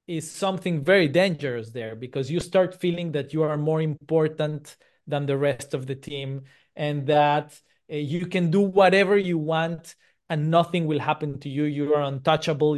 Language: English